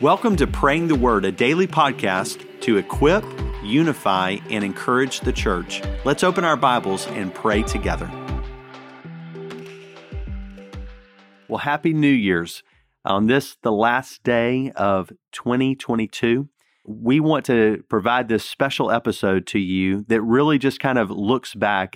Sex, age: male, 40-59